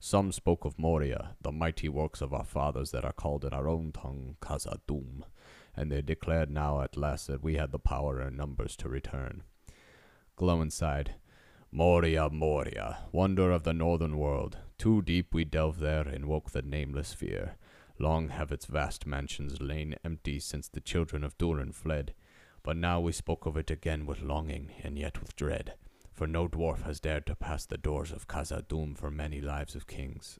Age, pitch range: 30-49, 75-85 Hz